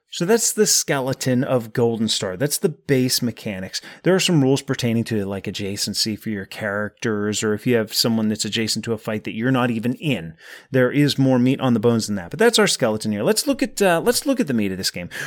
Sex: male